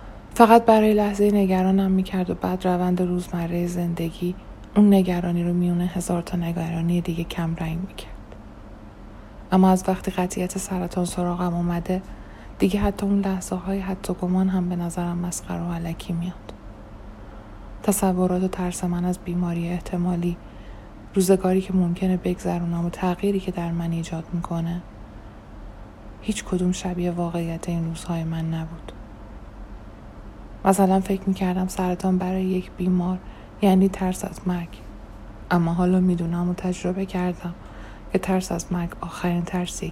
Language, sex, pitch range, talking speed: Persian, female, 165-185 Hz, 135 wpm